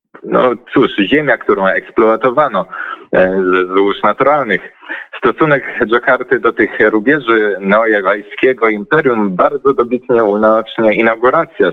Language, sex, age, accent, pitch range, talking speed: Polish, male, 30-49, native, 100-130 Hz, 100 wpm